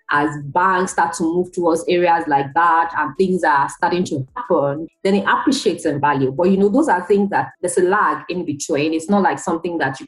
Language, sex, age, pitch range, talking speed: English, female, 30-49, 160-205 Hz, 225 wpm